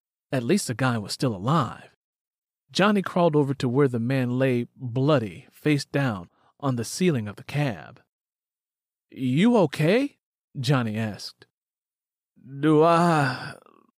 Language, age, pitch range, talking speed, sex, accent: English, 40-59, 120-165 Hz, 130 wpm, male, American